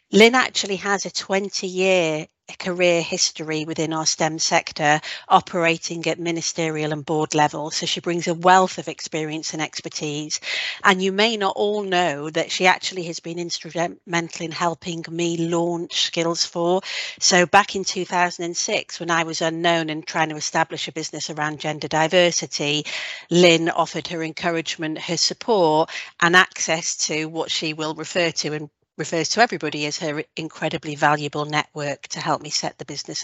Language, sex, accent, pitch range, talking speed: English, female, British, 155-180 Hz, 160 wpm